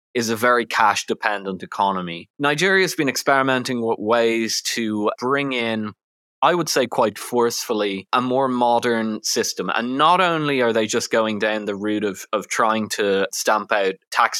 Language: English